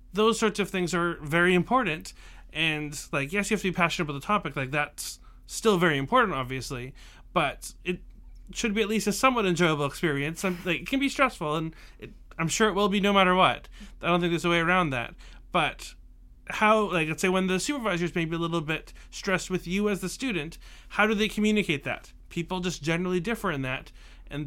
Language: English